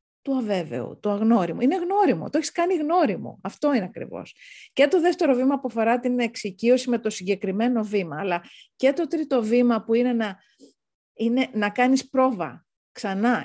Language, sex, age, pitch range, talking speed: Greek, female, 40-59, 190-260 Hz, 170 wpm